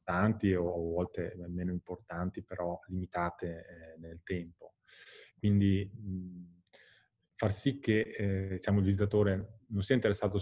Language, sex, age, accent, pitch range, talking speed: Italian, male, 20-39, native, 90-105 Hz, 110 wpm